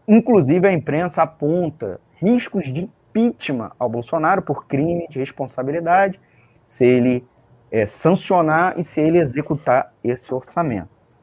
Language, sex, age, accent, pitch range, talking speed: Portuguese, male, 30-49, Brazilian, 120-180 Hz, 120 wpm